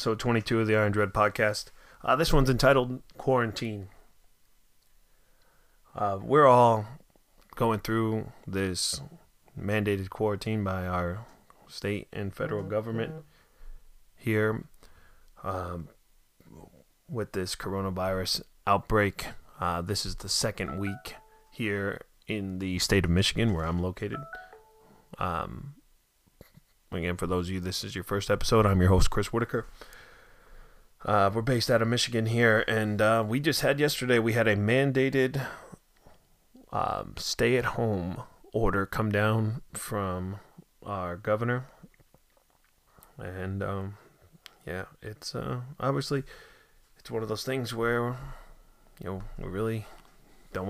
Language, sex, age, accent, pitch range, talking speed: English, male, 20-39, American, 95-120 Hz, 125 wpm